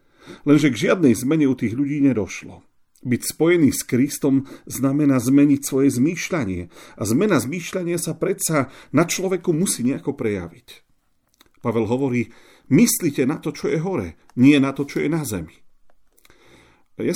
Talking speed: 145 wpm